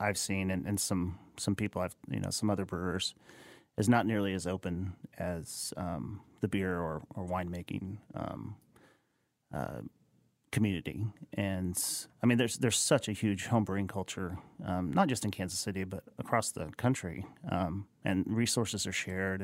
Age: 40-59